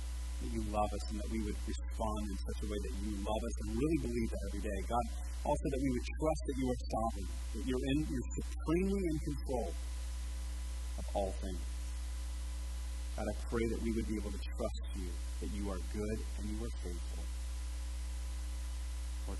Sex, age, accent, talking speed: female, 30-49, American, 195 wpm